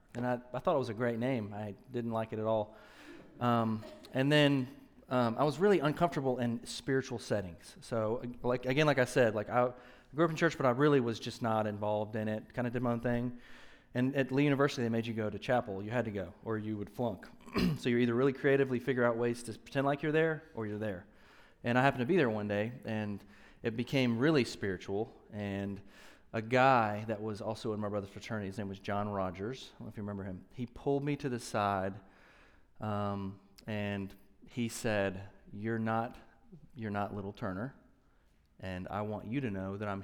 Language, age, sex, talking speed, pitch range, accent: English, 30-49, male, 220 wpm, 105-135 Hz, American